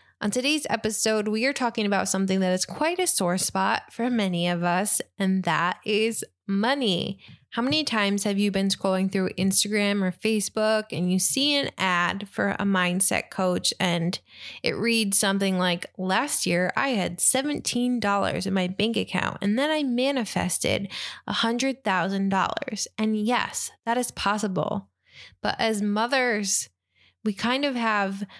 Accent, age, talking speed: American, 20-39, 155 wpm